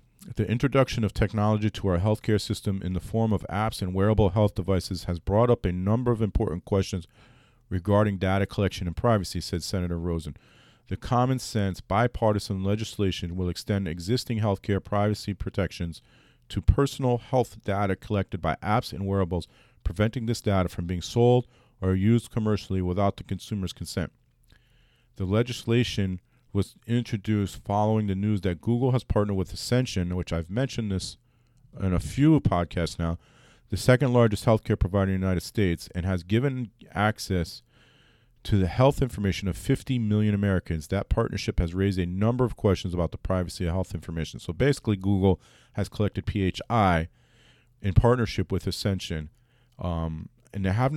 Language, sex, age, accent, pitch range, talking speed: English, male, 40-59, American, 95-115 Hz, 160 wpm